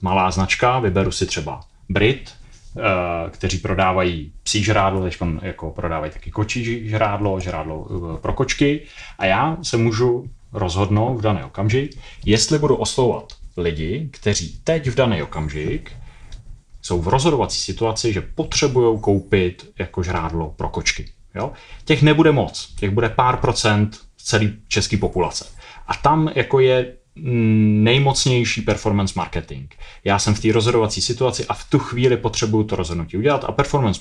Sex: male